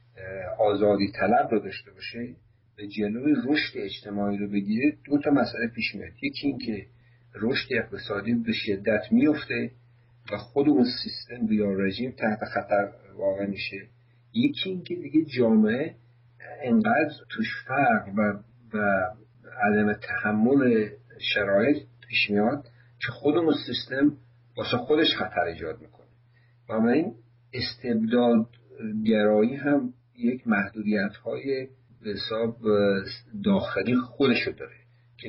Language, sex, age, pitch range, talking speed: Persian, male, 50-69, 105-130 Hz, 120 wpm